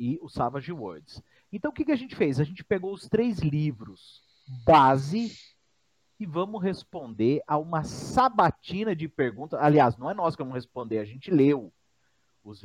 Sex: male